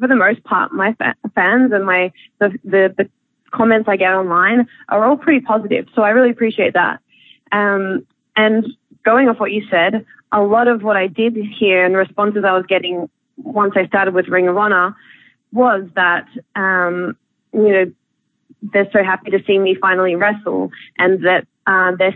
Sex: female